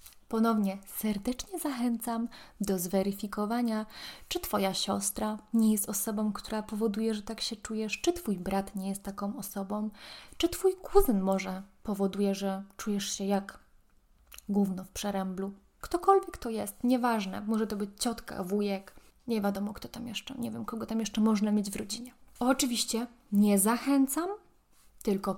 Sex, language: female, Polish